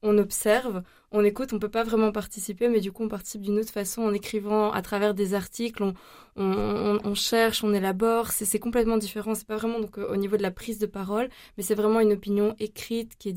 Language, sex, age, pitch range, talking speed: French, female, 20-39, 190-220 Hz, 240 wpm